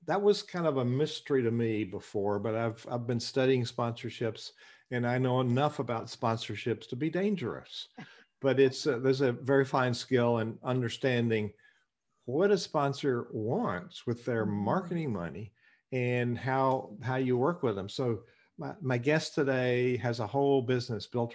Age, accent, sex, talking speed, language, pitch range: 50-69, American, male, 165 wpm, English, 110-130 Hz